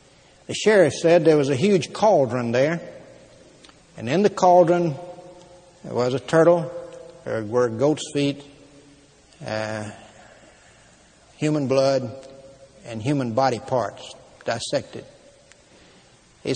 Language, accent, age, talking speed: English, American, 60-79, 110 wpm